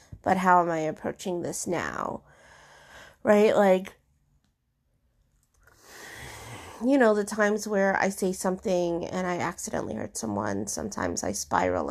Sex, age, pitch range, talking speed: female, 30-49, 175-225 Hz, 125 wpm